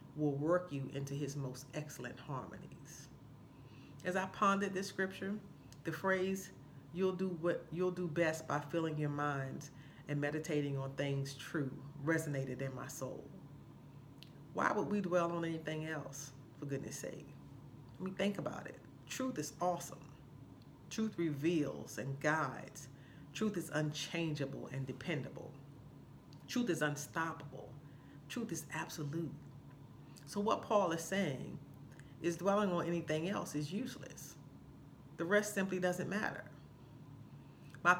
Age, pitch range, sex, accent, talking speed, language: 40-59, 140-170 Hz, female, American, 135 wpm, English